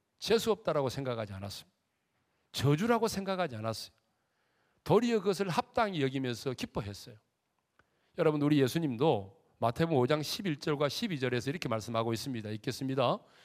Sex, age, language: male, 40-59, Korean